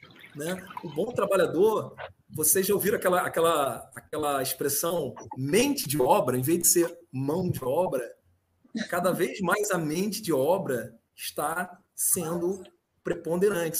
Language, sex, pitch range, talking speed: Portuguese, male, 175-230 Hz, 130 wpm